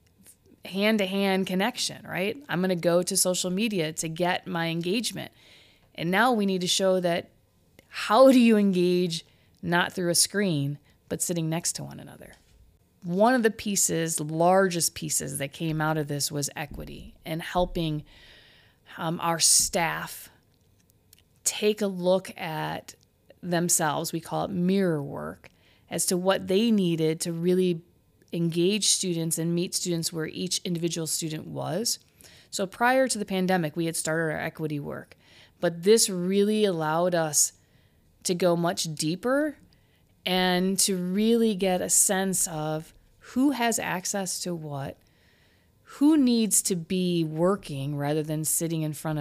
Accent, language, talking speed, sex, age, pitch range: American, English, 150 wpm, female, 30-49, 155-190 Hz